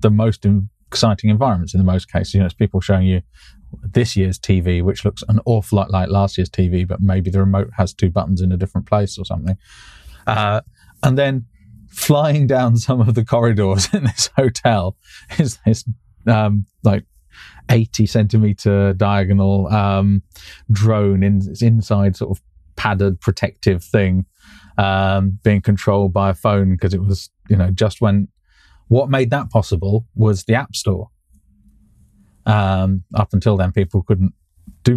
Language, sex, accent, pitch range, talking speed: English, male, British, 95-110 Hz, 165 wpm